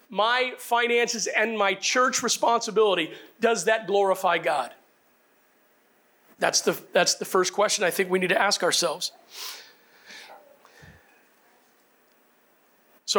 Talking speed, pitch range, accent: 110 wpm, 195-240 Hz, American